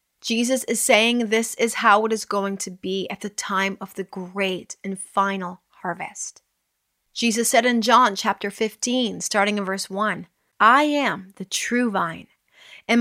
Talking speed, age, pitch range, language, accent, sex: 165 wpm, 30-49, 195-230 Hz, English, American, female